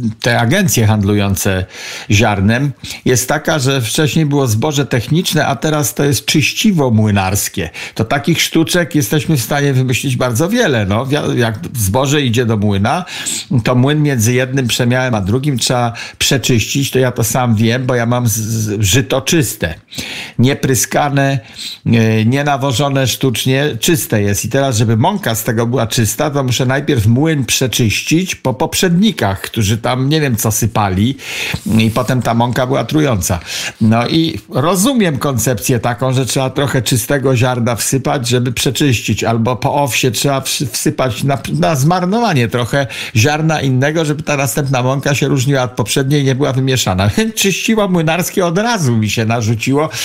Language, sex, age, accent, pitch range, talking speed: Polish, male, 50-69, native, 115-145 Hz, 150 wpm